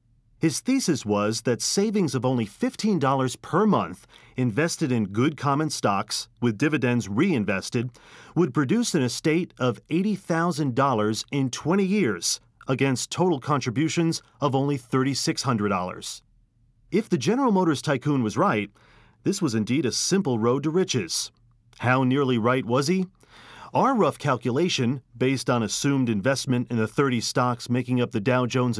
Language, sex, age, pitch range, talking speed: English, male, 40-59, 115-155 Hz, 145 wpm